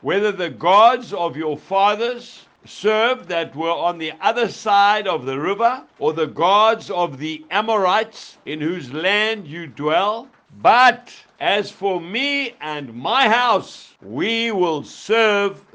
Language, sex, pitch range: English, male, 180-235 Hz